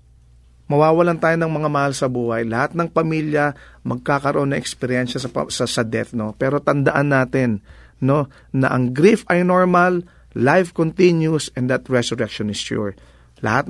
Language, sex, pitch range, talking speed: English, male, 115-160 Hz, 155 wpm